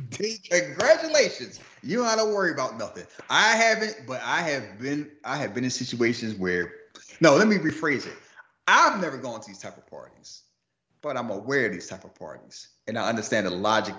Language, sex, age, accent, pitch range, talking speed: English, male, 30-49, American, 95-145 Hz, 195 wpm